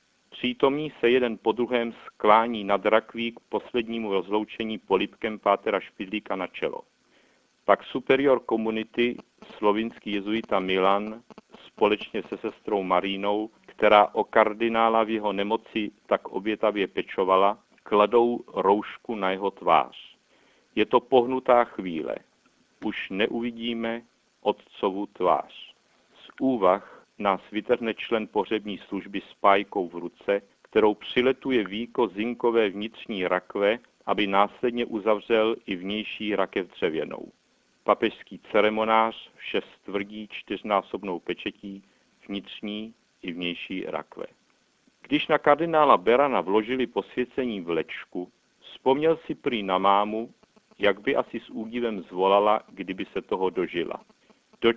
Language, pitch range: Czech, 100-120 Hz